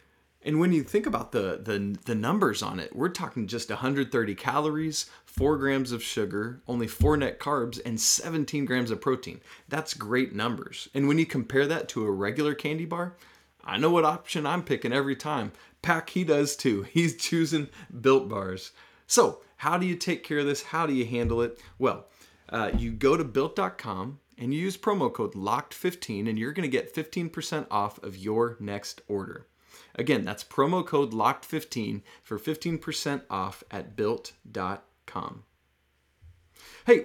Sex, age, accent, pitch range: male, 30-49, American, 115-165 Hz